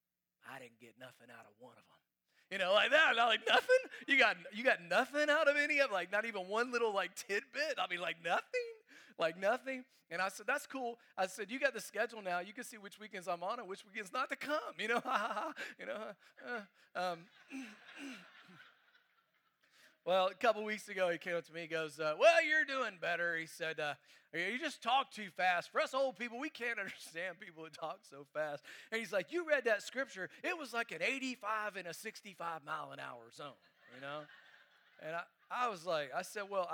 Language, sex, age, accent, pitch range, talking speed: English, male, 30-49, American, 170-245 Hz, 220 wpm